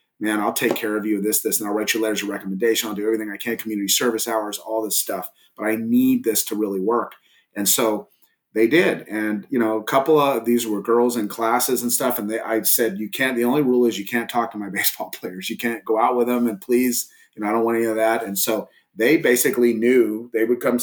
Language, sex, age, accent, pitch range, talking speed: English, male, 30-49, American, 110-125 Hz, 260 wpm